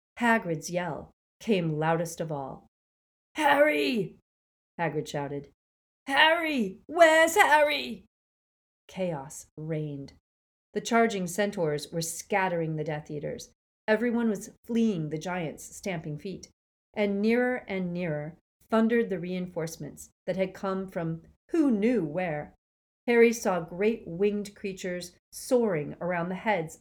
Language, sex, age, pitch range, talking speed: English, female, 40-59, 155-215 Hz, 115 wpm